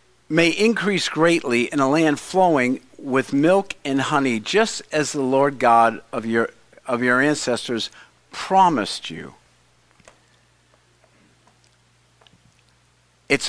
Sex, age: male, 50-69